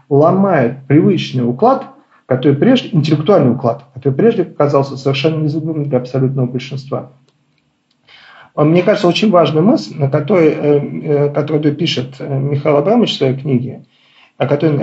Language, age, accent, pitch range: Russian, 40-59, native, 135-175 Hz